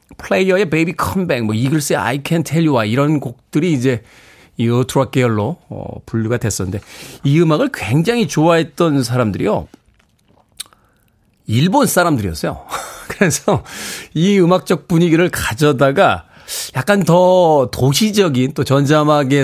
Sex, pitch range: male, 115-160 Hz